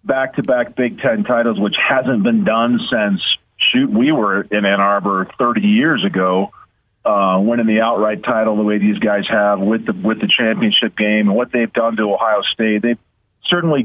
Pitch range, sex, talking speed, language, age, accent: 110-175 Hz, male, 185 wpm, English, 40-59, American